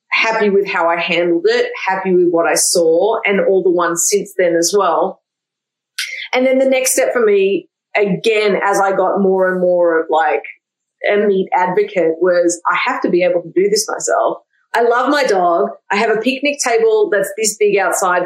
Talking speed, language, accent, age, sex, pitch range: 200 wpm, English, Australian, 30-49, female, 175-245 Hz